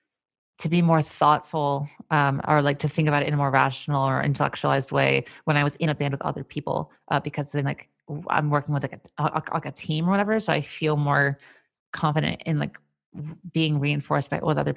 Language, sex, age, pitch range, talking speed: English, female, 30-49, 145-175 Hz, 220 wpm